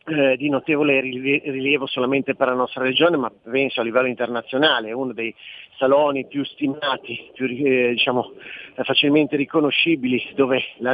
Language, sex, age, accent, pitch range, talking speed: Italian, male, 40-59, native, 130-145 Hz, 145 wpm